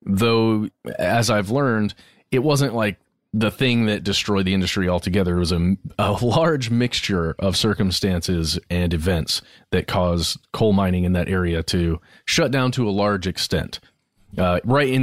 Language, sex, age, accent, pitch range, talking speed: English, male, 30-49, American, 95-125 Hz, 165 wpm